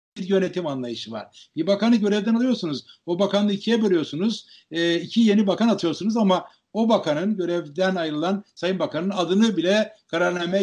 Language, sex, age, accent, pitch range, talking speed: Turkish, male, 60-79, native, 150-205 Hz, 145 wpm